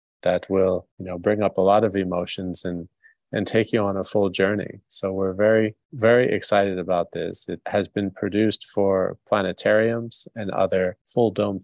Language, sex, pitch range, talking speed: English, male, 95-105 Hz, 175 wpm